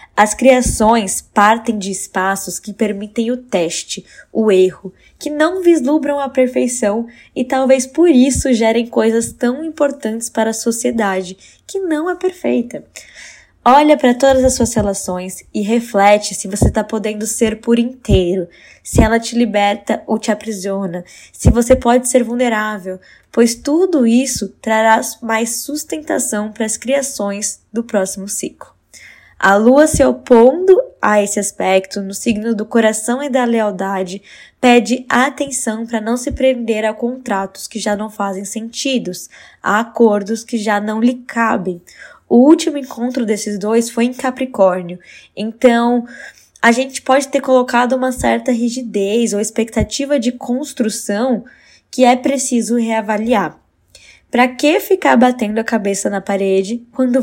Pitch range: 210-255 Hz